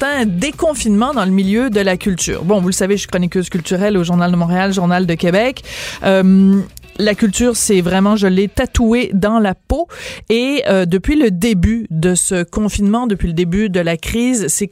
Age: 30-49